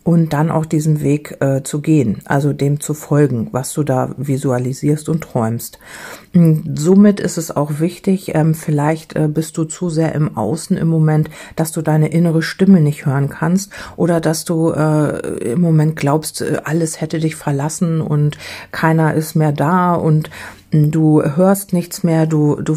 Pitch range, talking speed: 150-175 Hz, 175 wpm